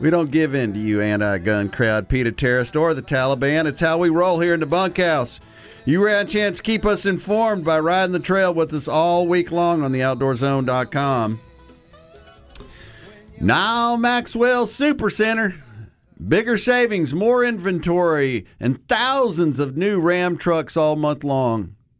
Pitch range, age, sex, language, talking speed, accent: 125-190 Hz, 50-69, male, English, 155 wpm, American